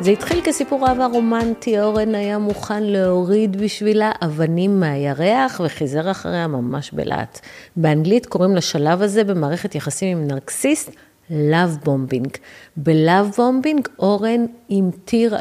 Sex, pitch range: female, 155-215 Hz